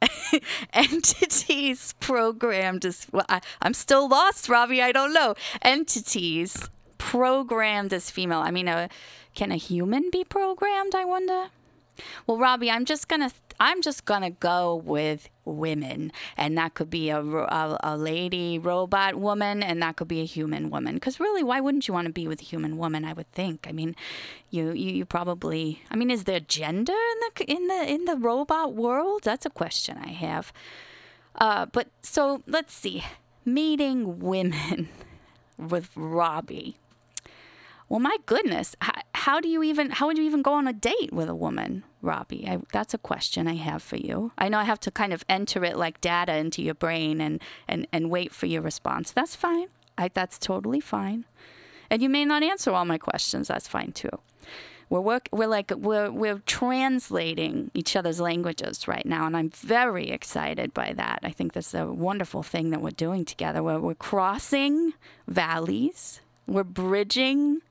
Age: 20-39